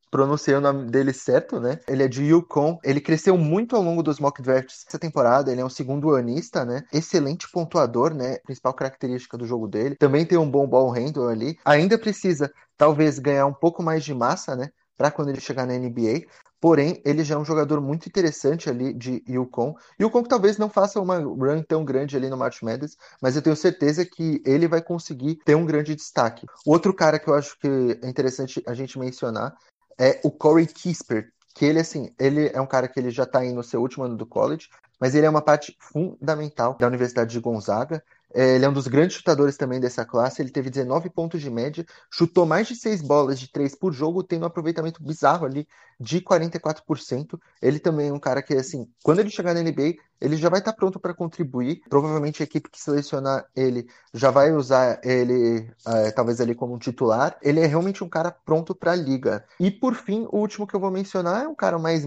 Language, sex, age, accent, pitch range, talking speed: Portuguese, male, 20-39, Brazilian, 130-165 Hz, 215 wpm